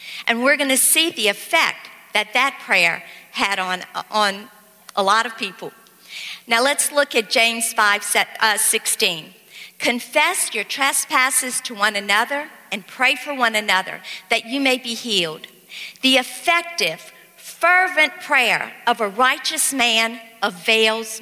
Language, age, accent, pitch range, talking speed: English, 50-69, American, 220-300 Hz, 140 wpm